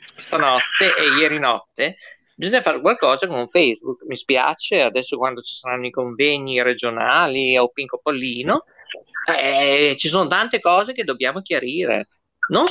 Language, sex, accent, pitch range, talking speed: Italian, male, native, 130-205 Hz, 140 wpm